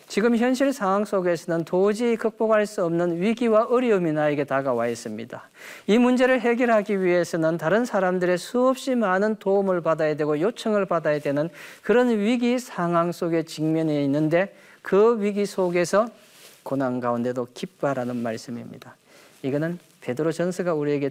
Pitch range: 145-215 Hz